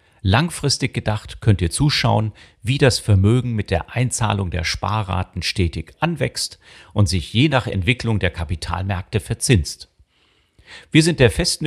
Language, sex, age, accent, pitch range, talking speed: German, male, 40-59, German, 95-120 Hz, 140 wpm